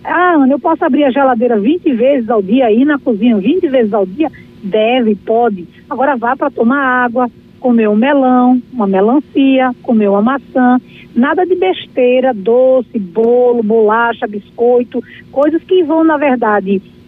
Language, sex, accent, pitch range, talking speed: Portuguese, female, Brazilian, 235-300 Hz, 160 wpm